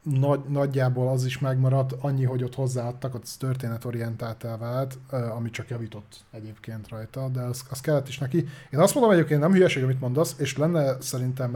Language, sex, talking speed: Hungarian, male, 180 wpm